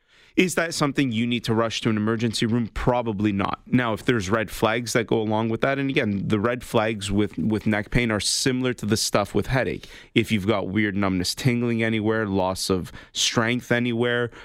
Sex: male